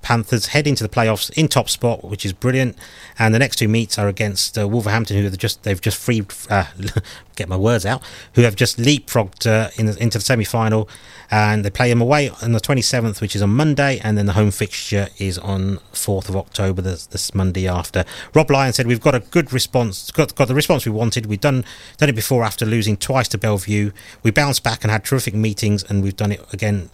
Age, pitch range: 30-49, 100-120 Hz